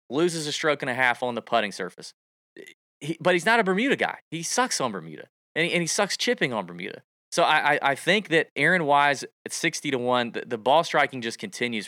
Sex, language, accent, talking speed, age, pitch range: male, English, American, 235 wpm, 30-49, 105-150 Hz